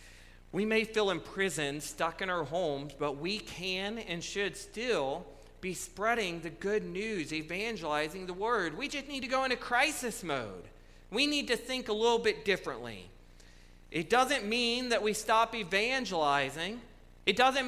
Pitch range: 180-245 Hz